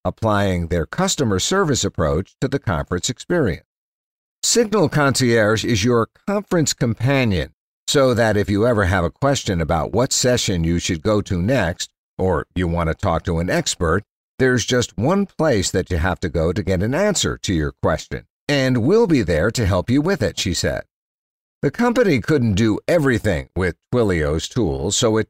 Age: 60-79